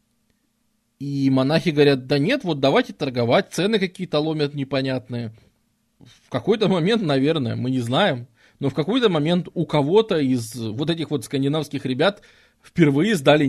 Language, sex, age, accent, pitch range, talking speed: Russian, male, 20-39, native, 130-180 Hz, 145 wpm